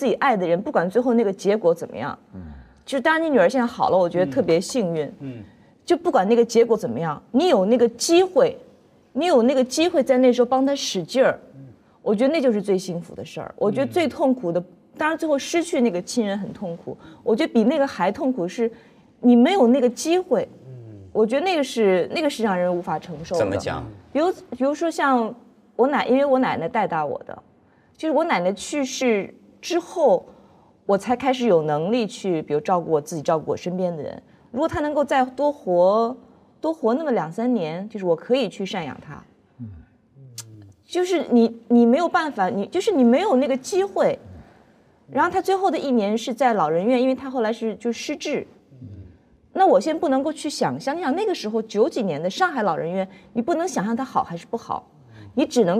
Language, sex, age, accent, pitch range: Chinese, female, 20-39, native, 185-280 Hz